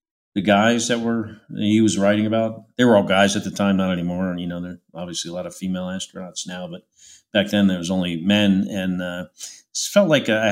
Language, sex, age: English, male, 40-59